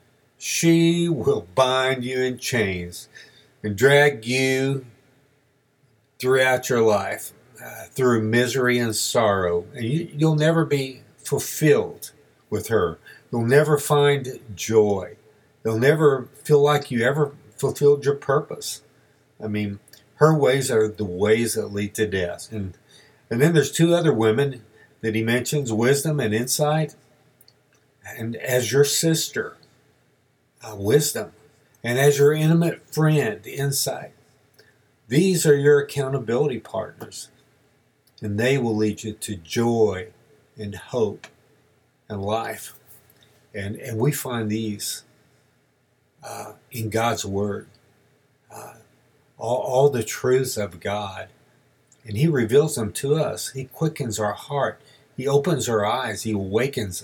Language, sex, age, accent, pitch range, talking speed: English, male, 50-69, American, 110-140 Hz, 125 wpm